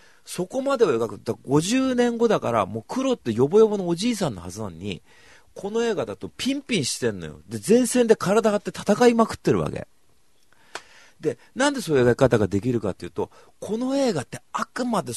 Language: Japanese